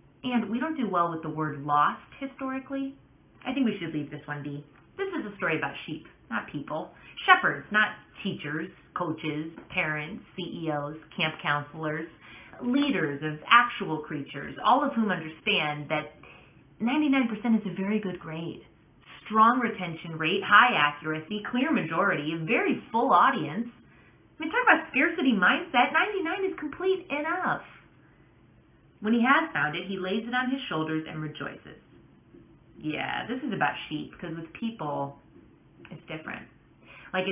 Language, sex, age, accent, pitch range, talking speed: English, female, 30-49, American, 155-235 Hz, 150 wpm